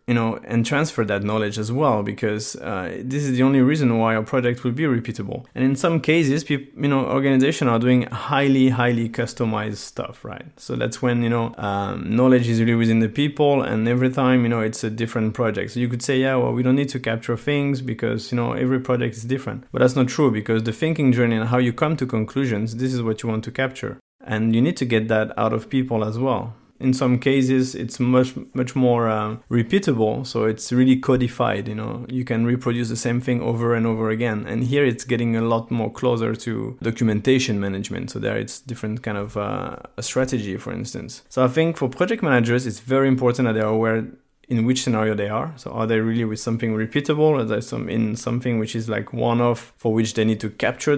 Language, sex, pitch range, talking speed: English, male, 115-130 Hz, 225 wpm